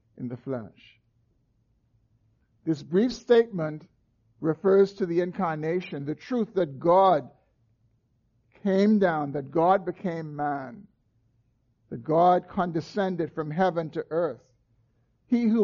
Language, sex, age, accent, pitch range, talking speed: English, male, 60-79, American, 115-190 Hz, 110 wpm